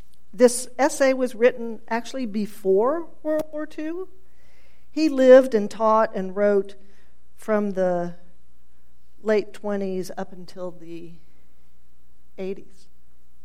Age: 50-69